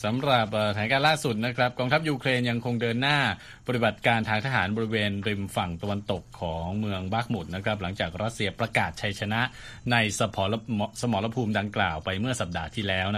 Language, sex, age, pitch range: Thai, male, 20-39, 100-120 Hz